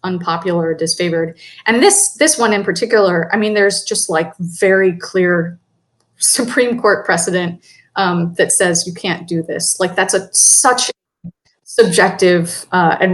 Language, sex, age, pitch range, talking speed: English, female, 20-39, 170-195 Hz, 150 wpm